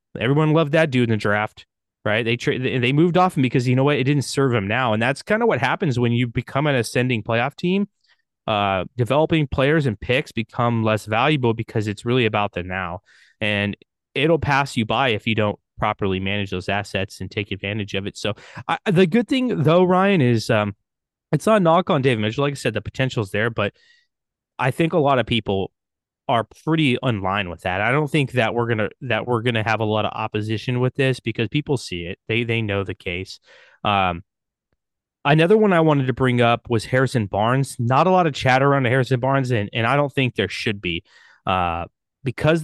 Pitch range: 105-140 Hz